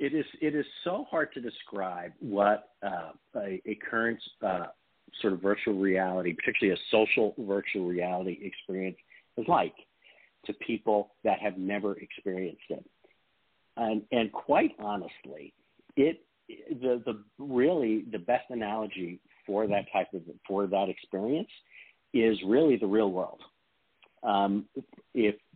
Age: 50-69